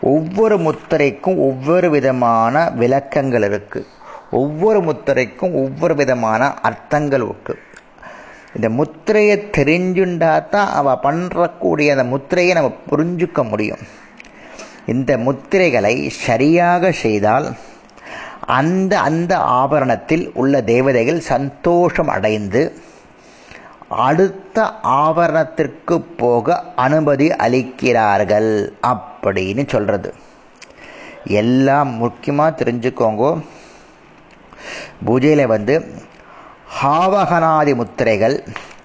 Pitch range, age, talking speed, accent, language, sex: 130-175 Hz, 30-49, 75 wpm, native, Tamil, male